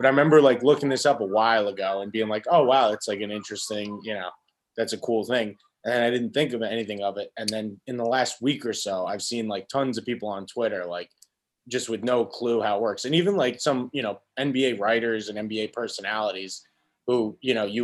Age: 20-39